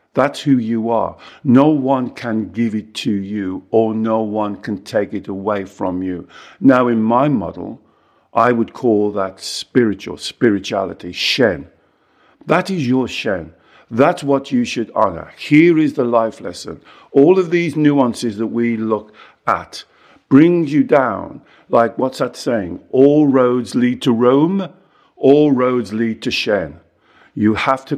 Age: 50-69